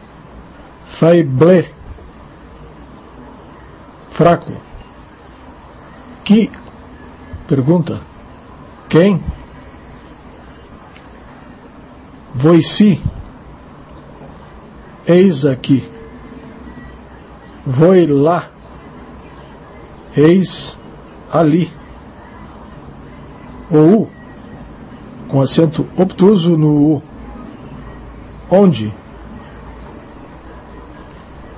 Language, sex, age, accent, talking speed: English, male, 60-79, Brazilian, 35 wpm